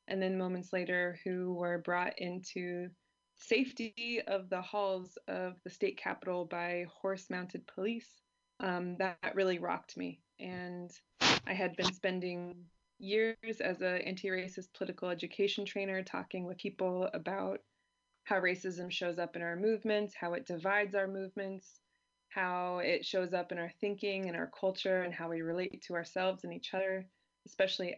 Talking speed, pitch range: 155 wpm, 180-205 Hz